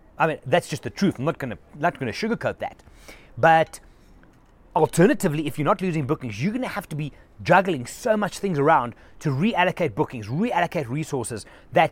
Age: 30-49